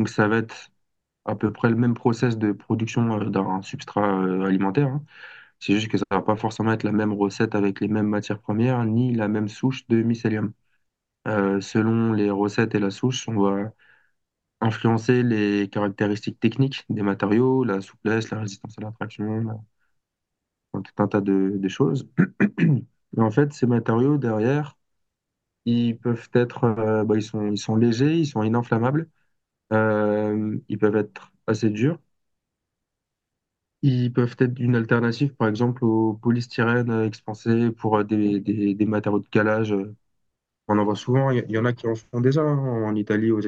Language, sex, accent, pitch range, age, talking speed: French, male, French, 105-120 Hz, 20-39, 175 wpm